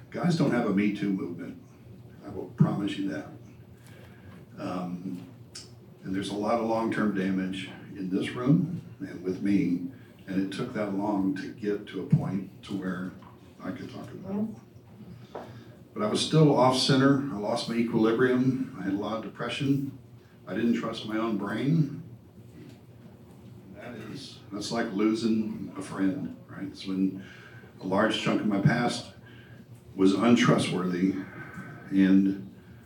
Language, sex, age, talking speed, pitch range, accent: English, male, 60-79, 150 wpm, 100-120 Hz, American